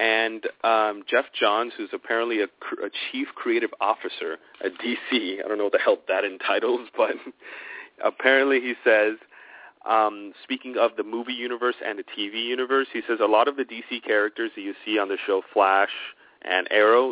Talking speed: 180 wpm